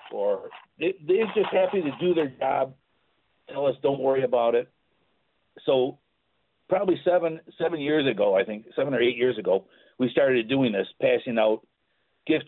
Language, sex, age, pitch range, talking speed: English, male, 50-69, 115-160 Hz, 165 wpm